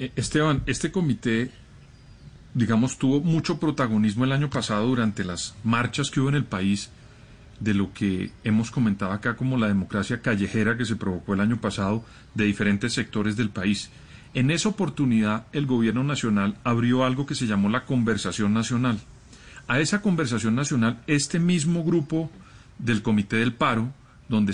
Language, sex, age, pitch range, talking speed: Spanish, male, 40-59, 110-145 Hz, 160 wpm